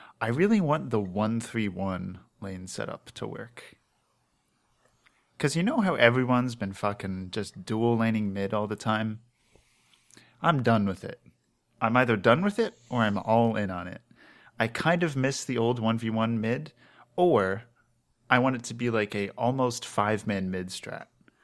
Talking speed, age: 160 wpm, 30-49